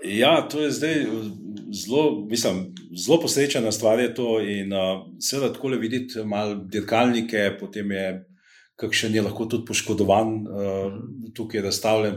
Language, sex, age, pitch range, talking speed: English, male, 40-59, 105-120 Hz, 140 wpm